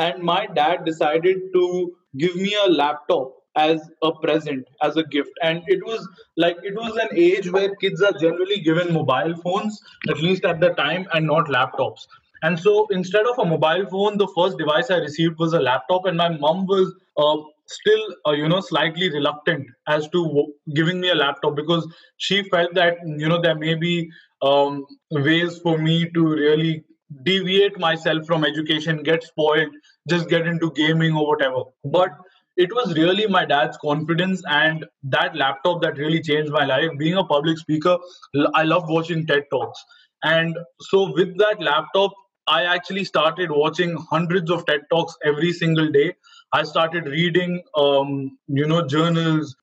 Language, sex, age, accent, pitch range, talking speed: English, male, 20-39, Indian, 155-180 Hz, 175 wpm